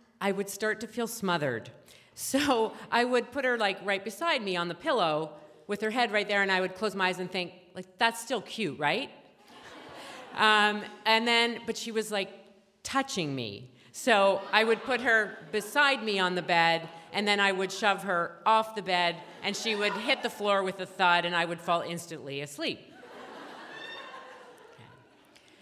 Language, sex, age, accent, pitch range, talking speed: English, female, 40-59, American, 160-215 Hz, 185 wpm